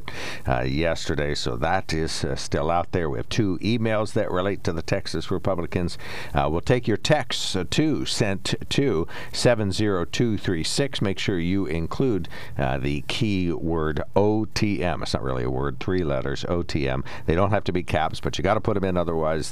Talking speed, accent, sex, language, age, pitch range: 195 wpm, American, male, English, 60-79, 80-105 Hz